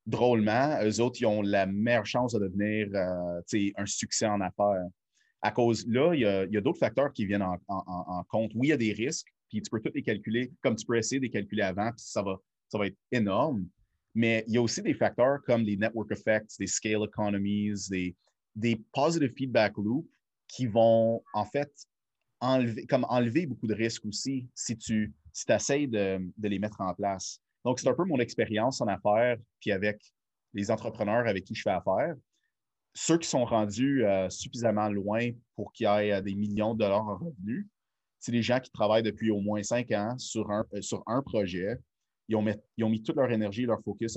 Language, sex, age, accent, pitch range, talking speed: French, male, 30-49, Canadian, 100-120 Hz, 220 wpm